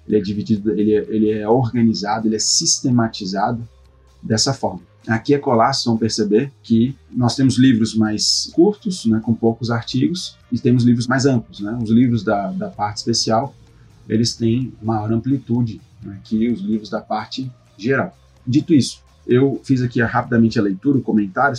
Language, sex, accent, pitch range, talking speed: Portuguese, male, Brazilian, 110-130 Hz, 170 wpm